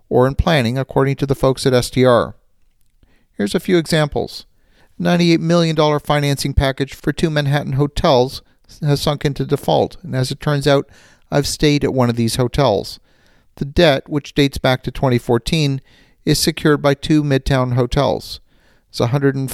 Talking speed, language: 155 wpm, English